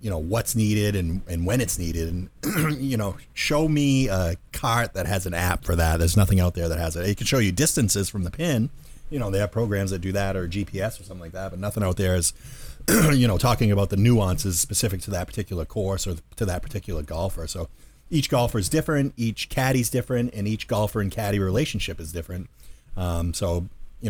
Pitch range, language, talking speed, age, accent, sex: 90-110 Hz, English, 225 wpm, 30-49, American, male